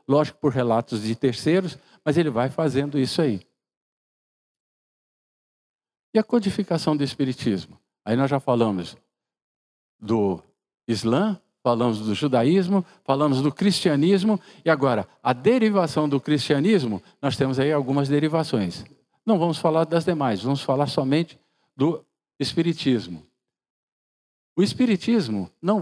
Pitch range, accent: 130-180 Hz, Brazilian